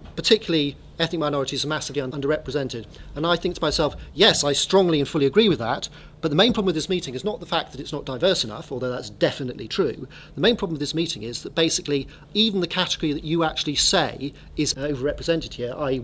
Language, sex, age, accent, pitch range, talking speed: English, male, 40-59, British, 145-185 Hz, 220 wpm